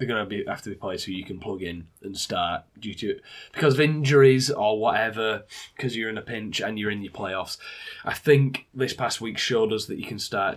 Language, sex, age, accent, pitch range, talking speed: English, male, 10-29, British, 105-130 Hz, 245 wpm